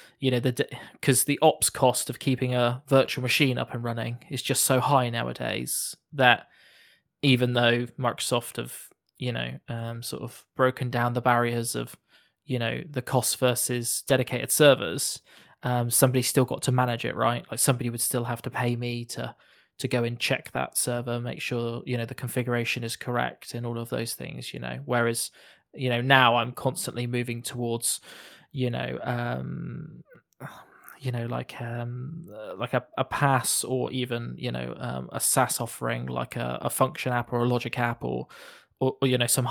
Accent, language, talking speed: British, English, 185 wpm